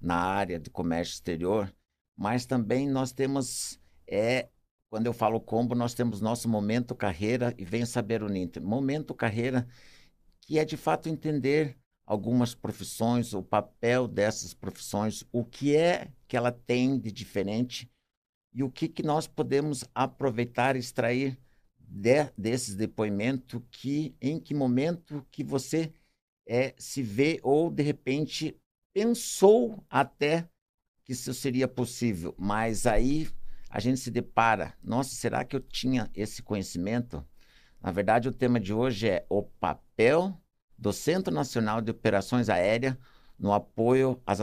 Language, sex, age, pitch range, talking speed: Portuguese, male, 60-79, 105-130 Hz, 145 wpm